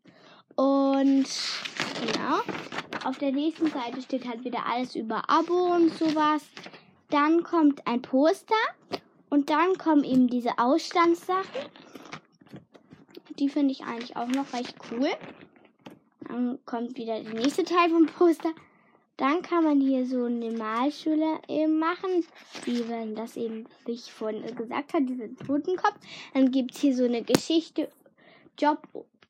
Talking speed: 135 wpm